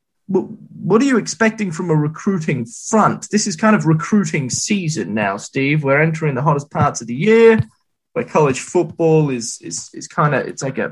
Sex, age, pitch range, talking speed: male, 20-39, 145-185 Hz, 190 wpm